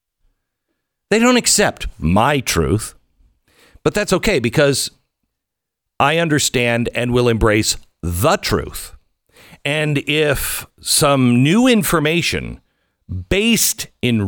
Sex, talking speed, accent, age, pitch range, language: male, 95 wpm, American, 50-69, 105-160 Hz, English